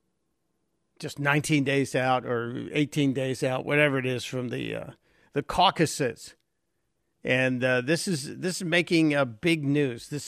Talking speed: 160 wpm